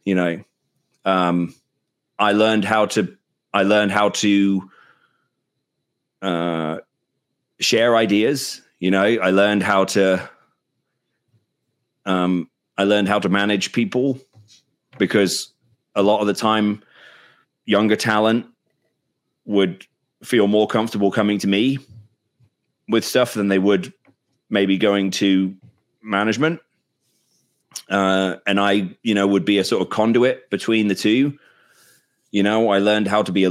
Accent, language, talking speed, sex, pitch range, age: British, English, 130 wpm, male, 95-115 Hz, 30-49